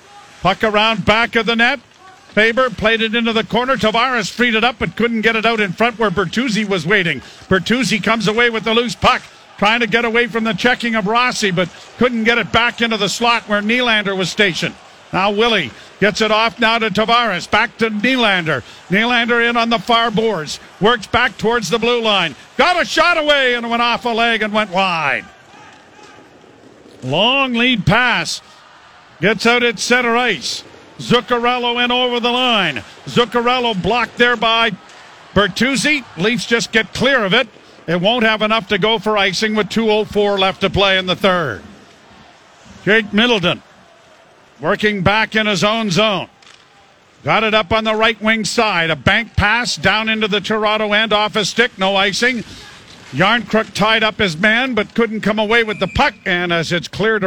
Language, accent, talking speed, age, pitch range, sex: English, American, 185 wpm, 50-69, 200-235 Hz, male